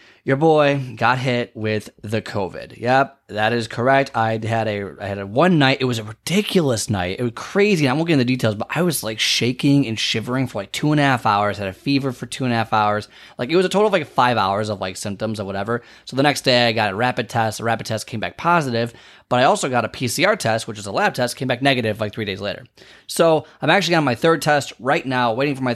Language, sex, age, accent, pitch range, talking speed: English, male, 20-39, American, 110-140 Hz, 275 wpm